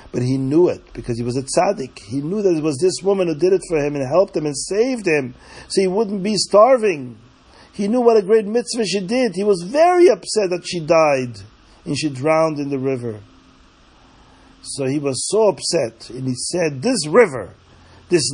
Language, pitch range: English, 120-185 Hz